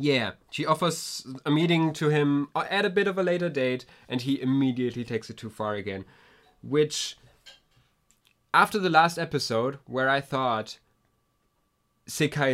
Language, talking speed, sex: English, 150 wpm, male